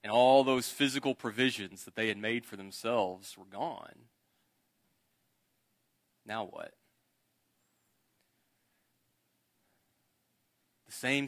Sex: male